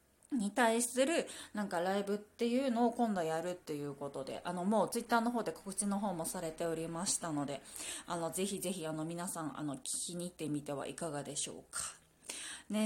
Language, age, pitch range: Japanese, 20-39, 175-245 Hz